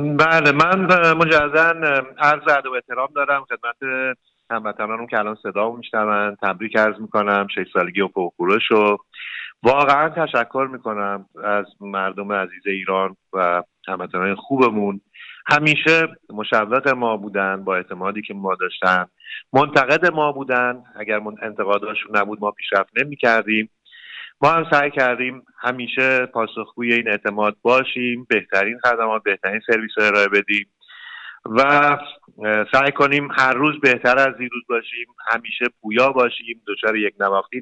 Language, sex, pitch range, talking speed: Persian, male, 105-135 Hz, 130 wpm